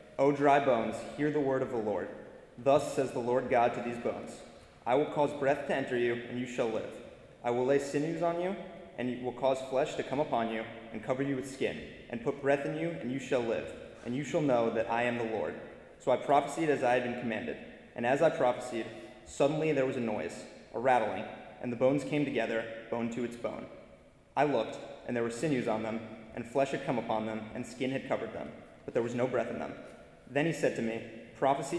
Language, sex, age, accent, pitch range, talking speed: English, male, 20-39, American, 115-145 Hz, 235 wpm